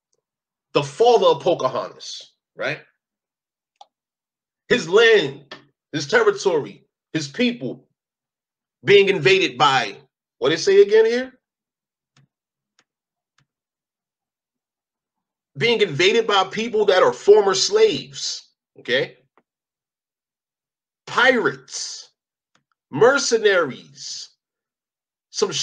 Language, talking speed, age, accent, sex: English, 75 wpm, 40-59, American, male